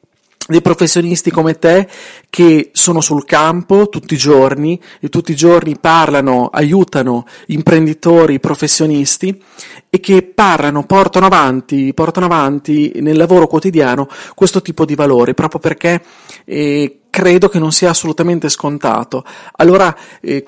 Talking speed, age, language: 130 wpm, 40-59, Italian